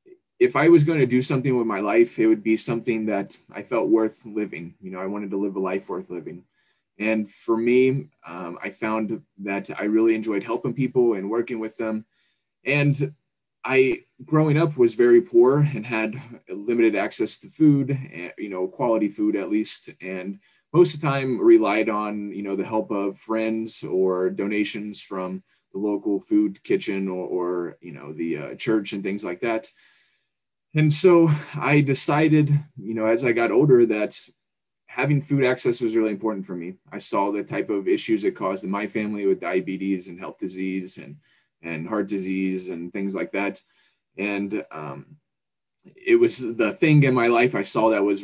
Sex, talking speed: male, 190 wpm